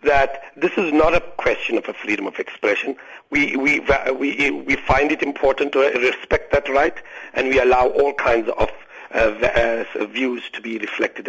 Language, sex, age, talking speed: English, male, 60-79, 175 wpm